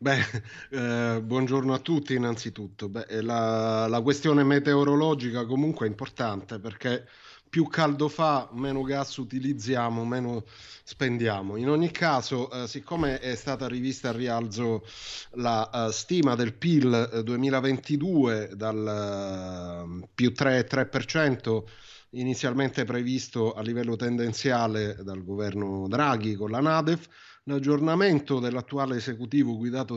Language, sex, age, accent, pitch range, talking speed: Italian, male, 30-49, native, 115-145 Hz, 115 wpm